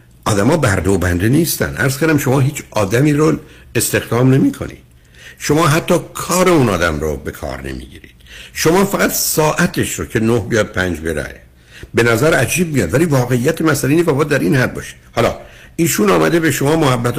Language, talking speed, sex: Persian, 170 wpm, male